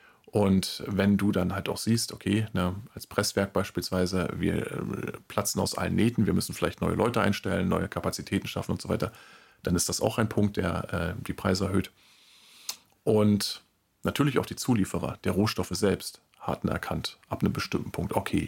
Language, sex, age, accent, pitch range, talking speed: German, male, 40-59, German, 95-105 Hz, 175 wpm